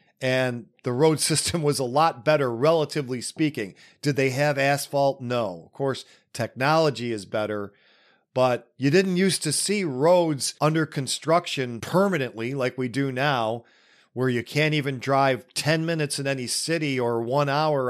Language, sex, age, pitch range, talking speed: English, male, 40-59, 115-145 Hz, 160 wpm